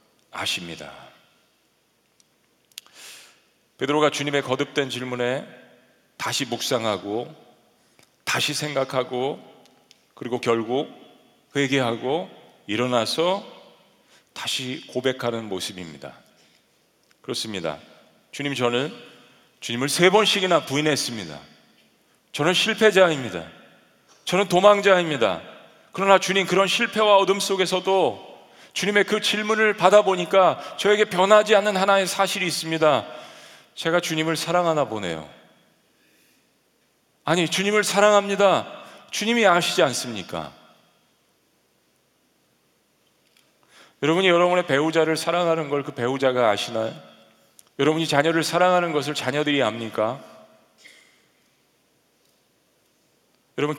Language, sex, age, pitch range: Korean, male, 40-59, 125-195 Hz